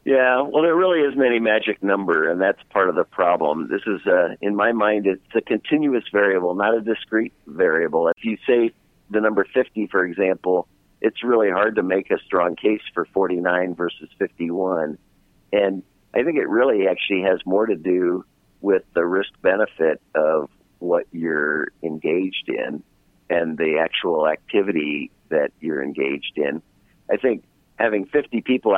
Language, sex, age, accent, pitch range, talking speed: English, male, 50-69, American, 90-110 Hz, 165 wpm